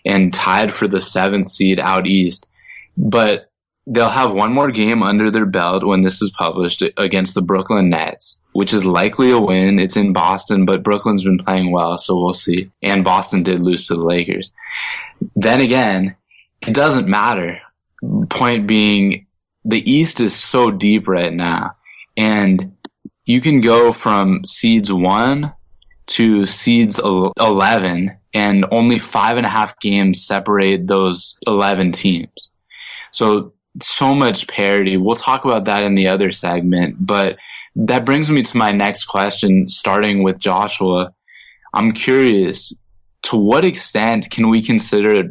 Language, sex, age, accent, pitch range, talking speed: English, male, 20-39, American, 95-110 Hz, 150 wpm